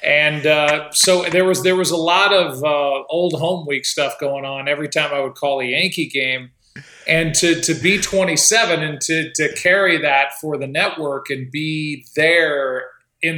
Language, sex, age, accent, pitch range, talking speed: English, male, 40-59, American, 140-160 Hz, 190 wpm